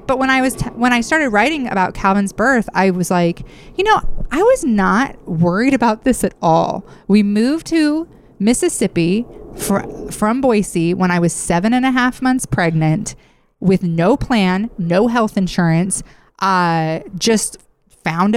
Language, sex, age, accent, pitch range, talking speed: English, female, 30-49, American, 175-235 Hz, 155 wpm